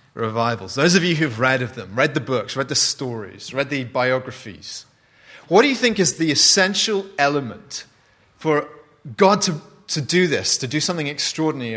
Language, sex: English, male